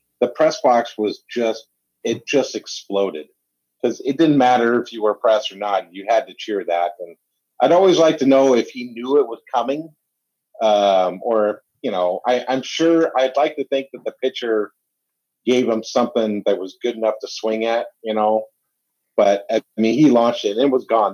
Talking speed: 200 wpm